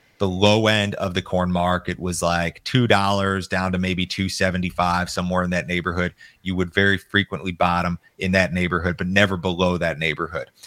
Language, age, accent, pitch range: English, 30-49, American, 90-100 Hz